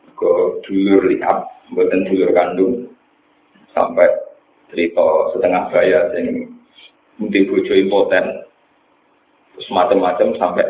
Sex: male